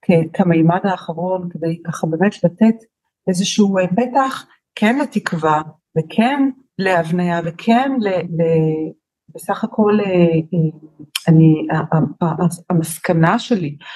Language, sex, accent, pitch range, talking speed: Hebrew, female, native, 165-205 Hz, 105 wpm